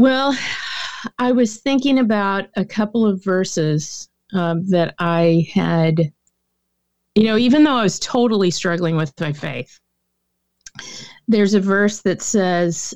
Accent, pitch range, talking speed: American, 165-215 Hz, 135 wpm